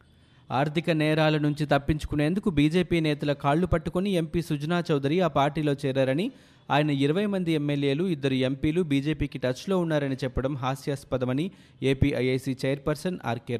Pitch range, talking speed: 120-150 Hz, 125 wpm